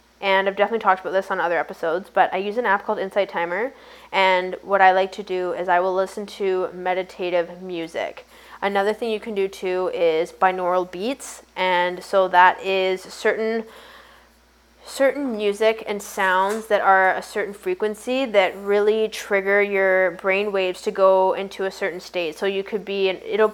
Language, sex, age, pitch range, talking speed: English, female, 10-29, 185-210 Hz, 180 wpm